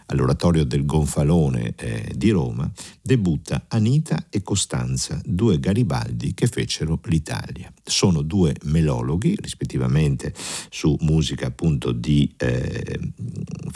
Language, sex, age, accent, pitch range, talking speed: Italian, male, 50-69, native, 70-95 Hz, 105 wpm